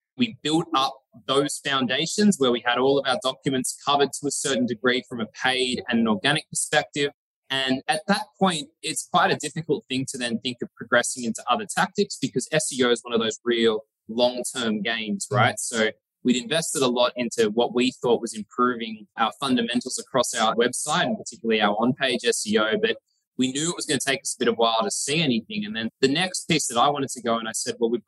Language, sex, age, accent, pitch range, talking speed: English, male, 20-39, Australian, 120-150 Hz, 220 wpm